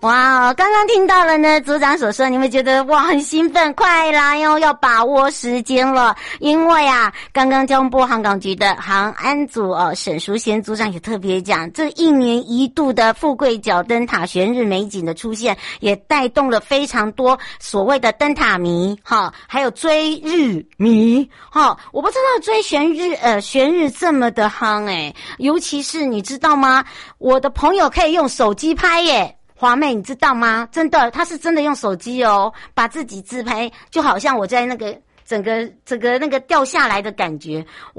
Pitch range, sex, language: 200-285 Hz, male, Chinese